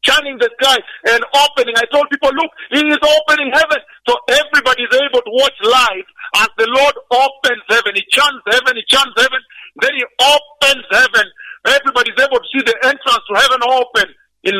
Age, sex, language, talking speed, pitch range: 50-69, male, English, 190 wpm, 225-295 Hz